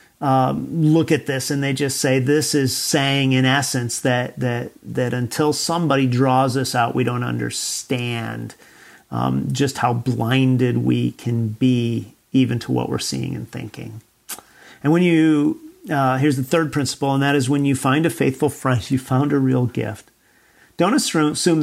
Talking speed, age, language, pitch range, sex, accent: 170 wpm, 40-59, English, 125-145 Hz, male, American